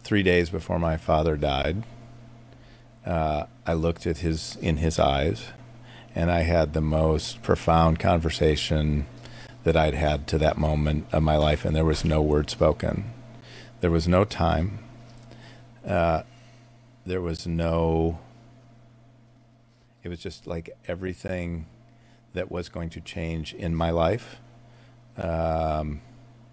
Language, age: English, 50-69